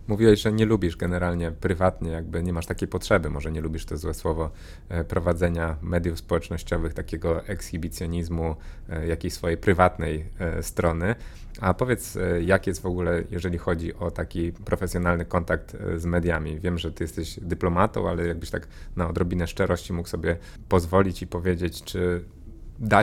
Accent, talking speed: native, 150 wpm